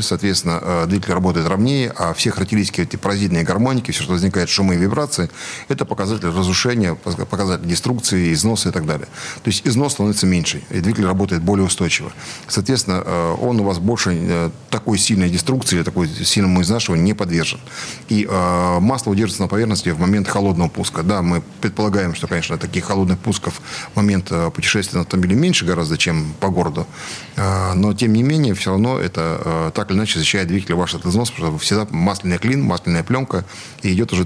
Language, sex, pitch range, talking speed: Russian, male, 90-110 Hz, 175 wpm